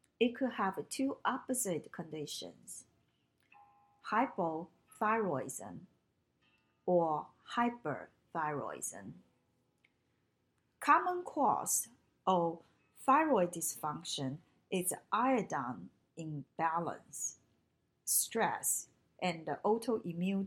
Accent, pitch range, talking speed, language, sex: Chinese, 160-225 Hz, 60 wpm, English, female